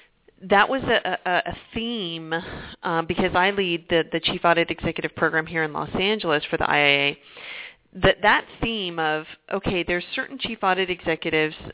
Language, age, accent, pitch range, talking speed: English, 40-59, American, 160-195 Hz, 170 wpm